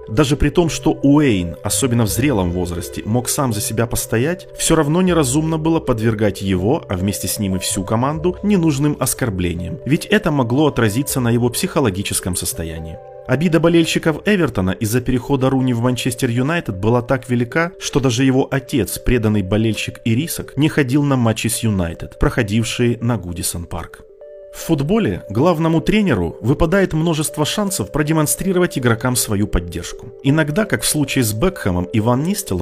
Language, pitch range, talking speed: Russian, 105-155 Hz, 155 wpm